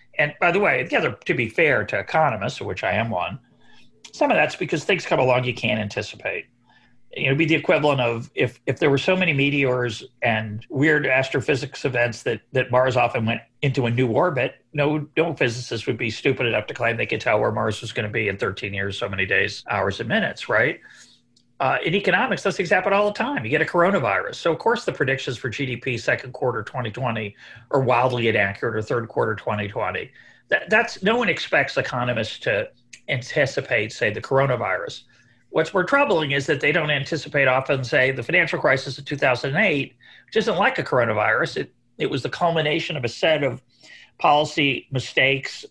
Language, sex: English, male